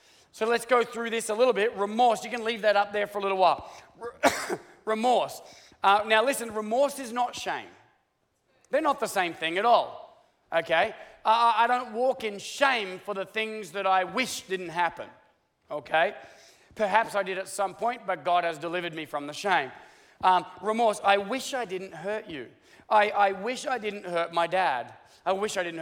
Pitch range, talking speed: 185-235 Hz, 195 wpm